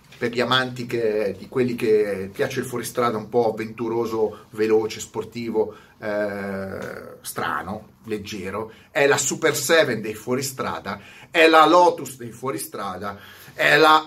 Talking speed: 130 wpm